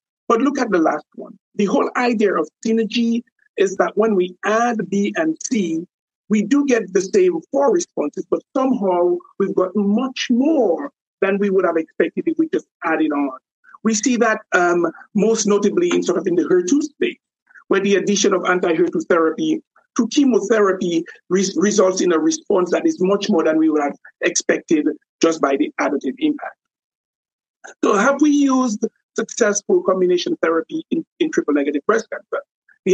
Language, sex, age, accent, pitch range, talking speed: English, male, 50-69, Nigerian, 185-295 Hz, 175 wpm